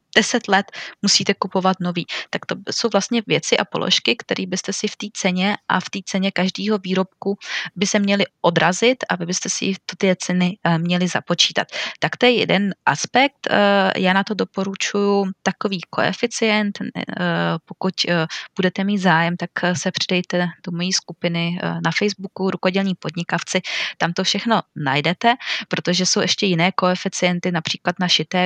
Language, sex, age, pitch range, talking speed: Czech, female, 20-39, 175-210 Hz, 150 wpm